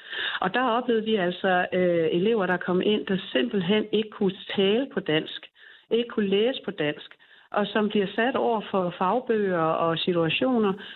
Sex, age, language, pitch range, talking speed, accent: female, 60-79, Danish, 180-230 Hz, 170 wpm, native